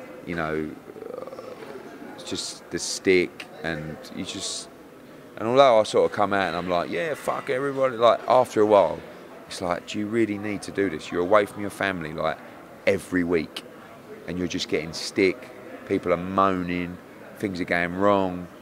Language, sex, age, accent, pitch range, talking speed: English, male, 30-49, British, 85-100 Hz, 175 wpm